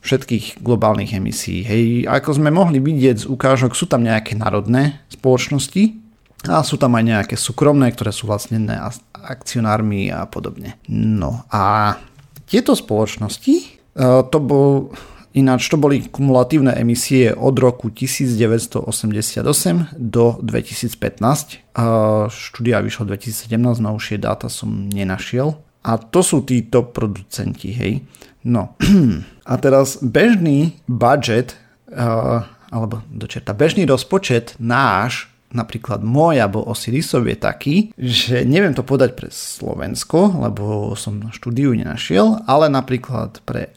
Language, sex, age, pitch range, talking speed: Slovak, male, 40-59, 110-135 Hz, 120 wpm